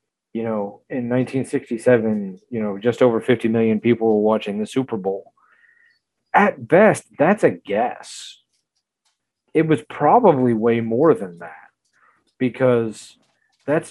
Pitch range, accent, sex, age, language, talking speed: 110-130 Hz, American, male, 30-49, English, 130 wpm